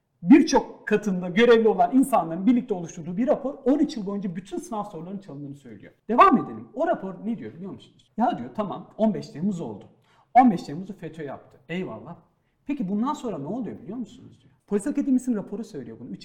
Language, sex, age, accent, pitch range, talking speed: Turkish, male, 50-69, native, 160-250 Hz, 185 wpm